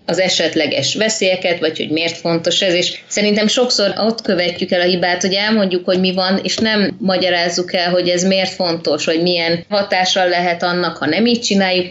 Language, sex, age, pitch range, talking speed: Hungarian, female, 20-39, 165-190 Hz, 190 wpm